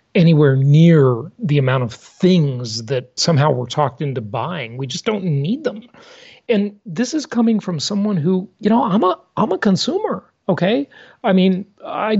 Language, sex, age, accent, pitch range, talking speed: English, male, 40-59, American, 130-190 Hz, 170 wpm